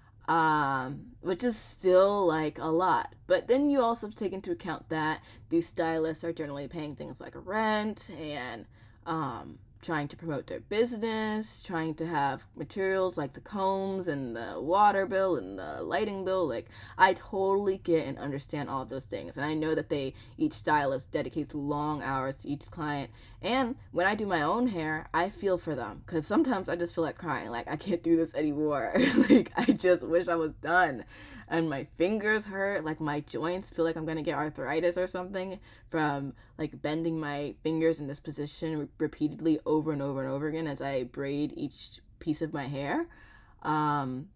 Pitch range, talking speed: 145-185 Hz, 185 wpm